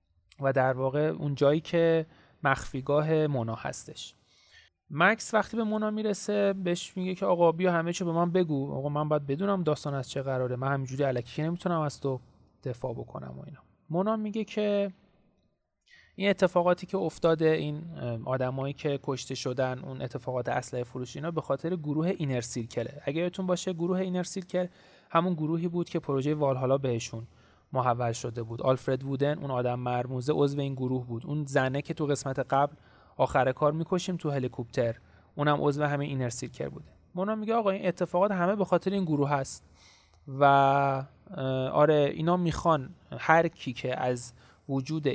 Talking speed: 165 wpm